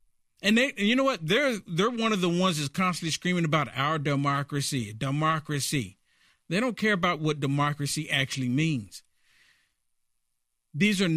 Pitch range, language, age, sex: 150-200 Hz, English, 50-69, male